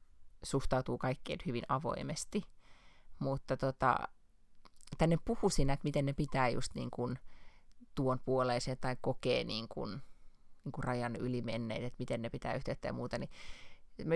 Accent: native